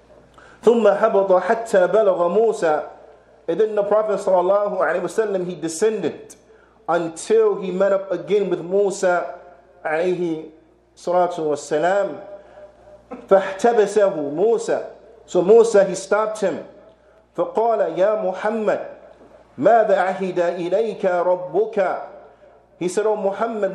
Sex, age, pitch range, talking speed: male, 50-69, 180-220 Hz, 65 wpm